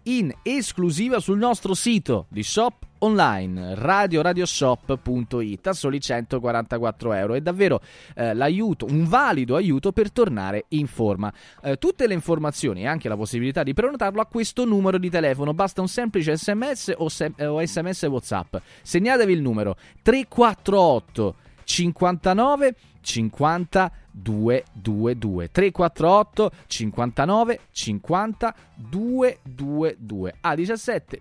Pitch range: 110-175 Hz